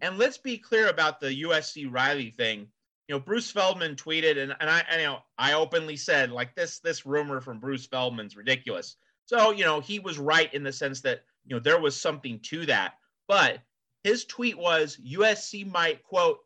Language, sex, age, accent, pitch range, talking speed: English, male, 30-49, American, 135-175 Hz, 205 wpm